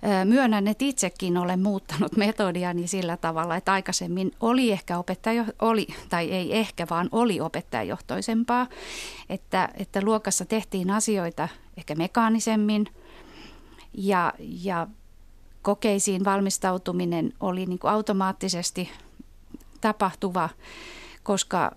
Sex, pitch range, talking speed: female, 180-215 Hz, 105 wpm